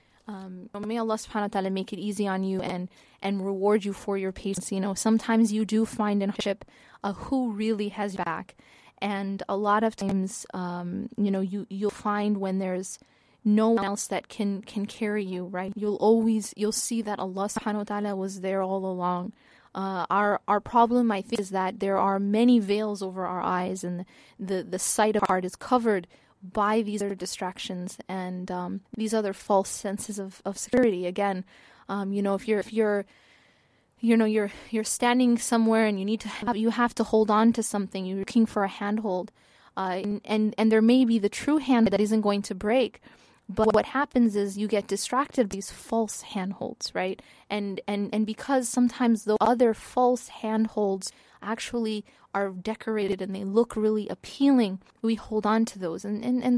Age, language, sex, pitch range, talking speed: 20-39, English, female, 195-225 Hz, 200 wpm